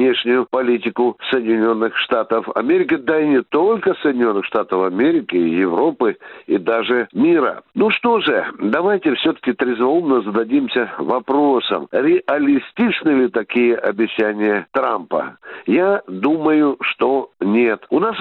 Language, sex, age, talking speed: Russian, male, 60-79, 115 wpm